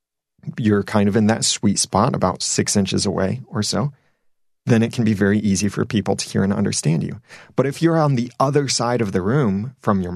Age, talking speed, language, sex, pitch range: 30-49, 225 wpm, English, male, 100-125 Hz